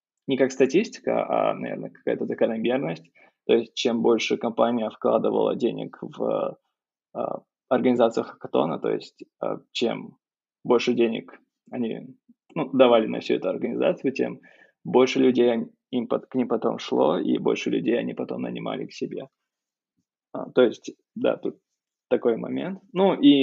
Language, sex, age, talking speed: Russian, male, 20-39, 145 wpm